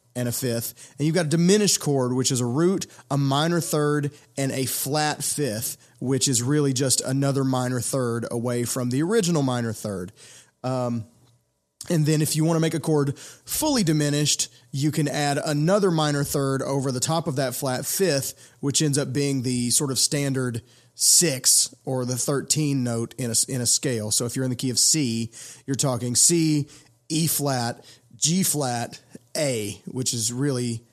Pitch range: 125-150 Hz